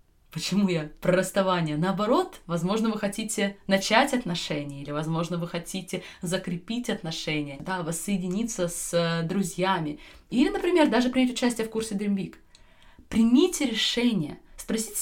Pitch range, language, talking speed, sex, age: 150-200 Hz, Russian, 130 wpm, female, 20-39